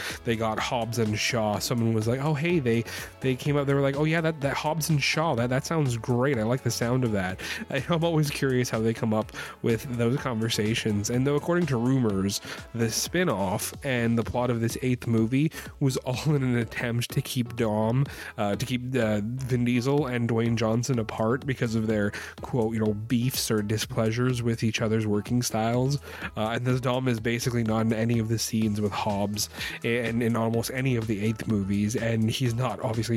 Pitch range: 110-125 Hz